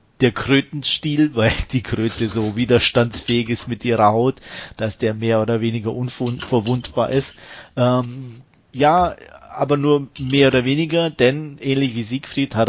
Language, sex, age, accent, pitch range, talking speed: German, male, 30-49, German, 115-130 Hz, 140 wpm